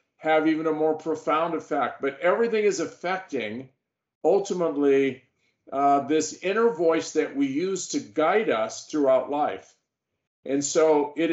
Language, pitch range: English, 135-170 Hz